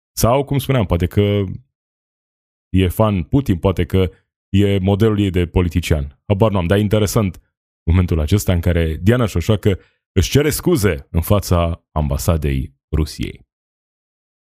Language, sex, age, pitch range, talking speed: Romanian, male, 20-39, 85-105 Hz, 140 wpm